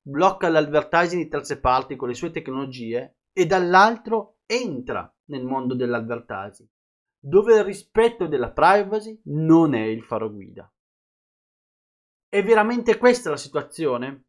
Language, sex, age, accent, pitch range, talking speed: Italian, male, 30-49, native, 135-195 Hz, 125 wpm